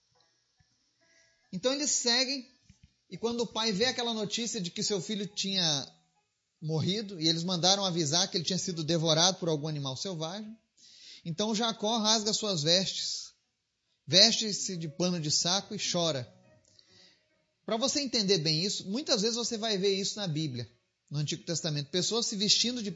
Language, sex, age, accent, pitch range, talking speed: Portuguese, male, 30-49, Brazilian, 155-215 Hz, 160 wpm